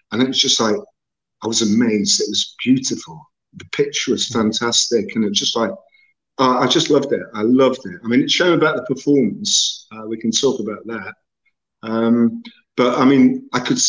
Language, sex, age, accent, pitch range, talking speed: English, male, 50-69, British, 115-175 Hz, 205 wpm